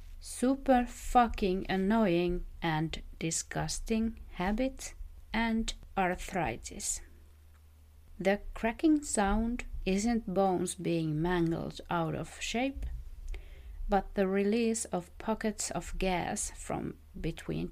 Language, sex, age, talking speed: English, female, 30-49, 90 wpm